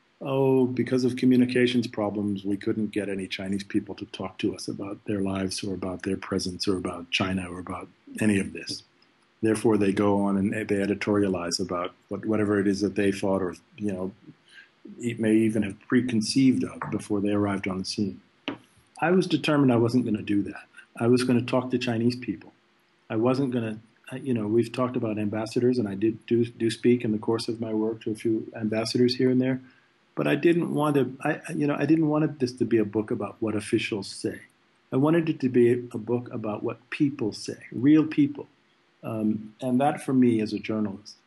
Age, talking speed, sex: 50-69, 210 wpm, male